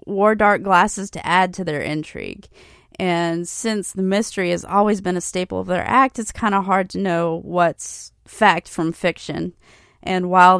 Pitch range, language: 180-220 Hz, English